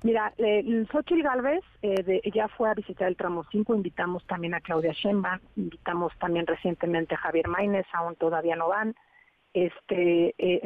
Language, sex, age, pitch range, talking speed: Spanish, female, 40-59, 175-215 Hz, 170 wpm